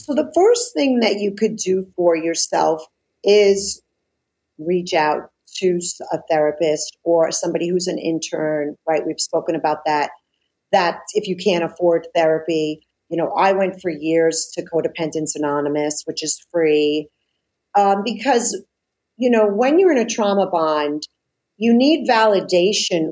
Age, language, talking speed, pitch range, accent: 40-59, English, 150 wpm, 165-225 Hz, American